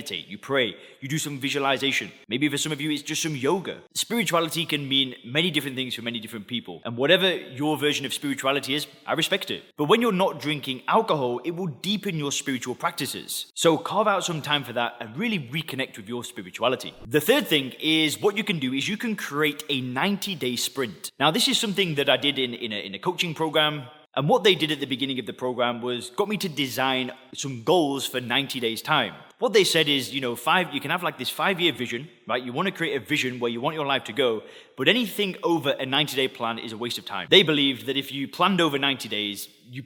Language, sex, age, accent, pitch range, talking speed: English, male, 20-39, British, 130-165 Hz, 245 wpm